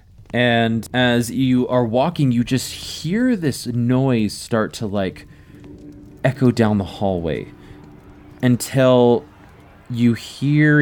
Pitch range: 95-125 Hz